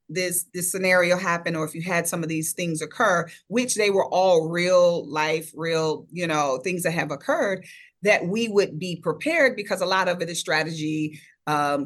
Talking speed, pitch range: 195 wpm, 160-190 Hz